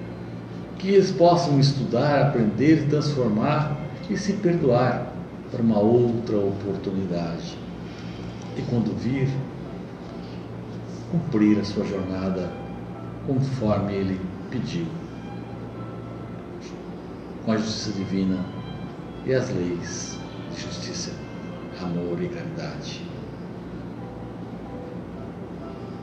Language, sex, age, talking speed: Portuguese, male, 60-79, 80 wpm